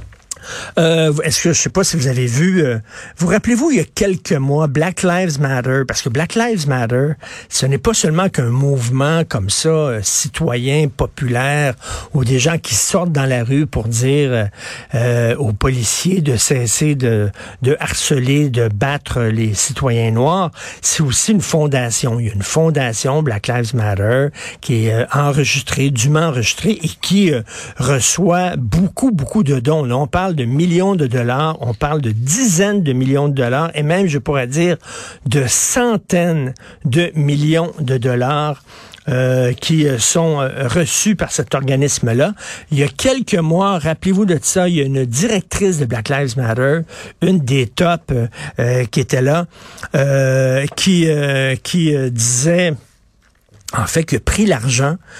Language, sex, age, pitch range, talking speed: French, male, 60-79, 125-165 Hz, 170 wpm